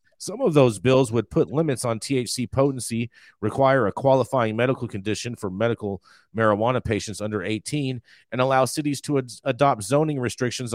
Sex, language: male, English